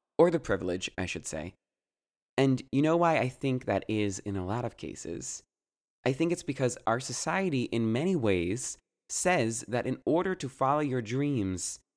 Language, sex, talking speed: English, male, 180 wpm